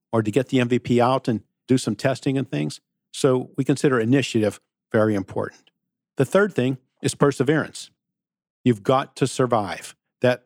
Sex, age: male, 50-69